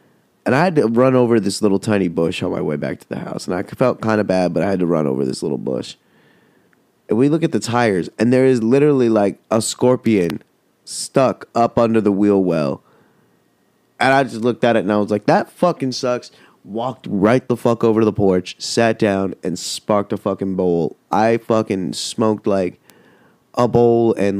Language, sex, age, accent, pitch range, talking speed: English, male, 20-39, American, 100-115 Hz, 210 wpm